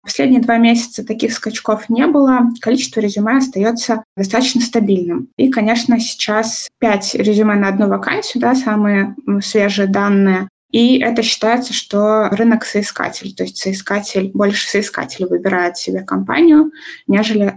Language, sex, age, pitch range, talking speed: Russian, female, 20-39, 205-235 Hz, 130 wpm